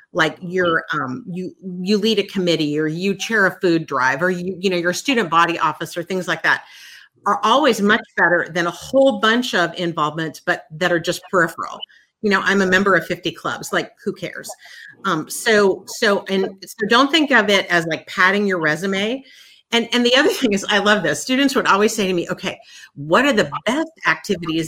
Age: 50-69